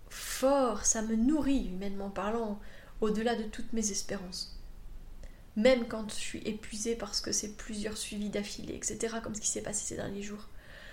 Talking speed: 170 wpm